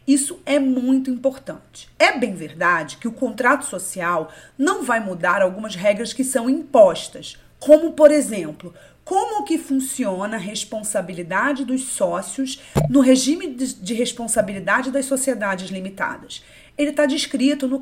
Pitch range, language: 200-275 Hz, Portuguese